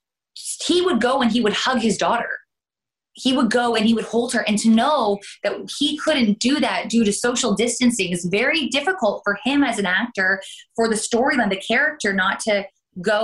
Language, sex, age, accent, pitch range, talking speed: English, female, 20-39, American, 170-225 Hz, 205 wpm